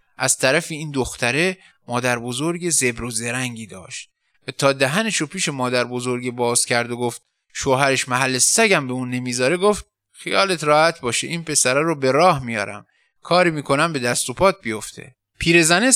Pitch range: 130-185 Hz